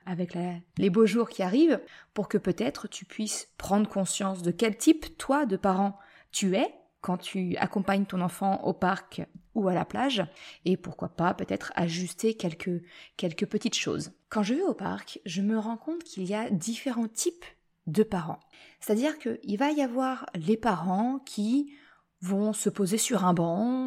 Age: 20-39